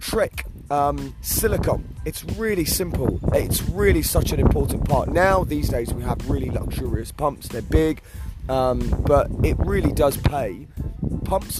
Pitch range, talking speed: 105-145 Hz, 150 wpm